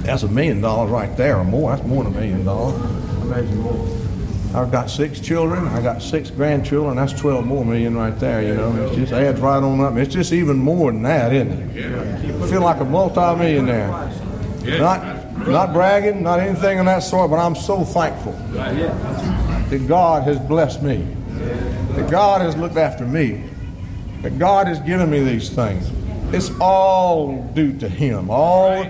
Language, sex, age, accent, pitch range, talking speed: English, male, 60-79, American, 115-180 Hz, 185 wpm